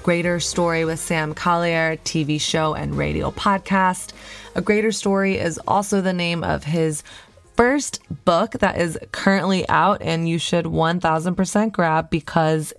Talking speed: 150 wpm